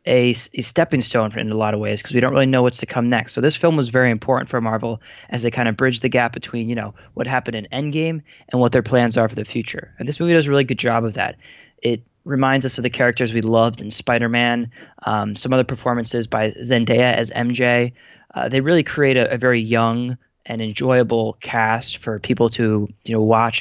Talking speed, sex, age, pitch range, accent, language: 235 wpm, male, 20-39, 115-130 Hz, American, English